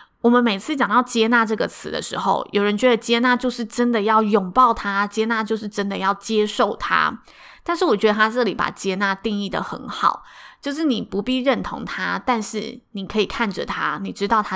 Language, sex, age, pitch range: Chinese, female, 20-39, 200-245 Hz